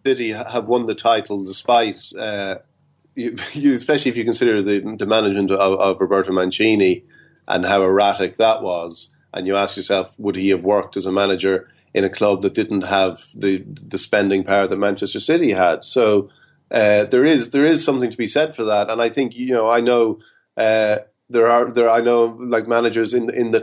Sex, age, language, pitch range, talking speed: male, 30-49, English, 105-125 Hz, 205 wpm